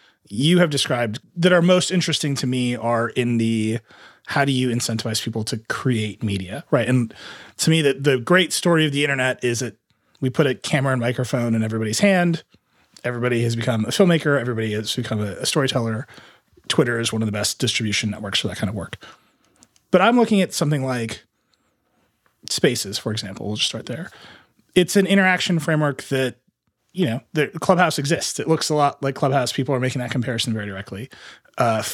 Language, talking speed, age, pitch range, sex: English, 195 wpm, 30-49, 115-145 Hz, male